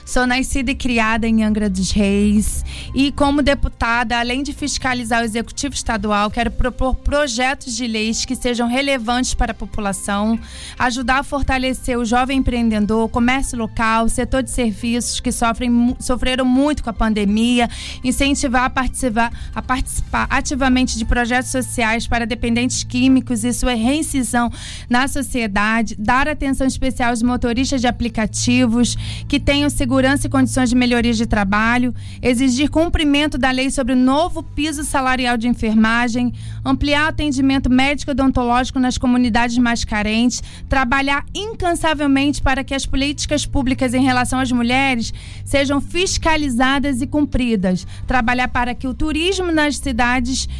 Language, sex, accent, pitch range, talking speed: Portuguese, female, Brazilian, 235-275 Hz, 145 wpm